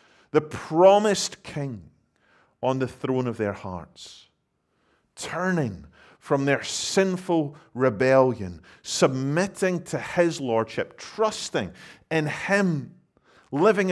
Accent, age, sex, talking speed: British, 40-59, male, 95 wpm